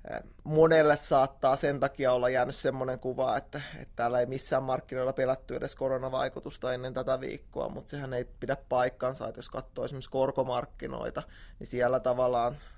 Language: Finnish